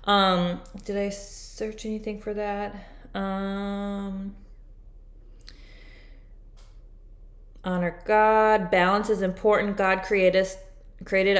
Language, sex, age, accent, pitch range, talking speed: English, female, 20-39, American, 165-190 Hz, 85 wpm